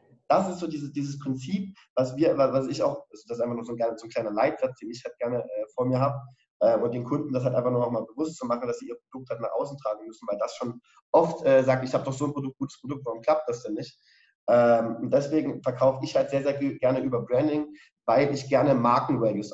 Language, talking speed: German, 260 wpm